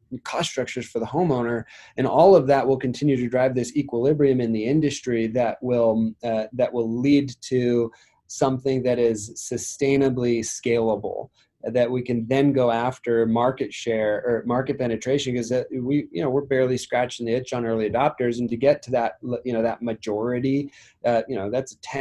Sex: male